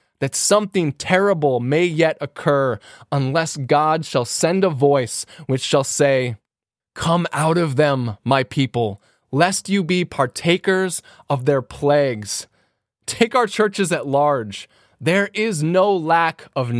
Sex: male